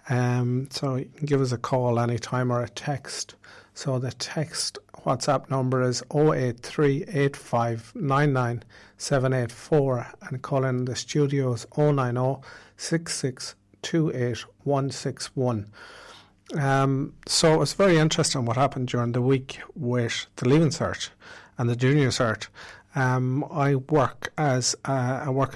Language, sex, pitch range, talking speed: English, male, 120-140 Hz, 115 wpm